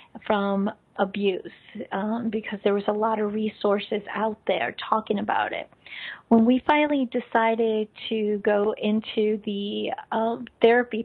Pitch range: 205-230 Hz